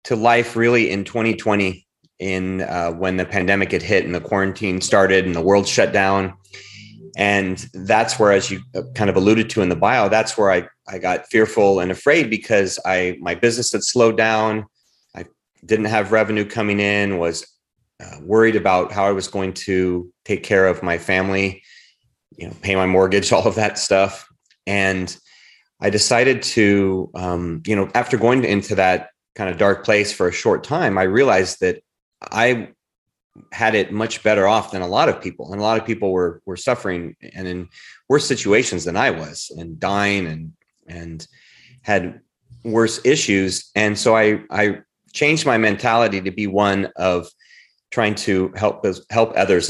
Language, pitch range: English, 95-110 Hz